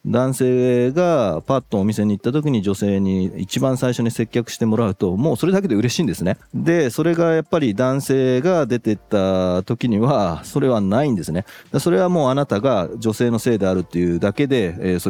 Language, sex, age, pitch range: Japanese, male, 30-49, 95-135 Hz